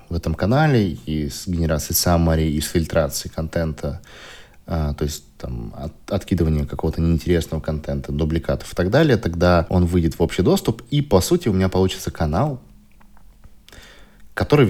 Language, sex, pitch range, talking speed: Russian, male, 80-100 Hz, 145 wpm